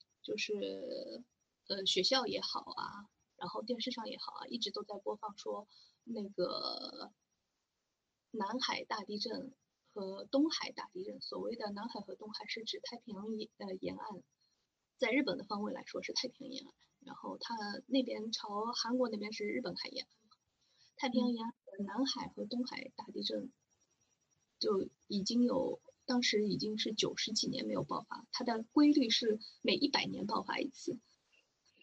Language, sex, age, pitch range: Chinese, female, 20-39, 215-265 Hz